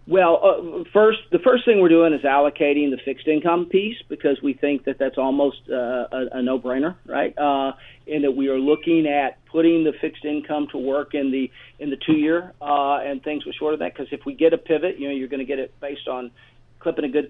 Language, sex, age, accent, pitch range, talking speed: English, male, 40-59, American, 135-165 Hz, 235 wpm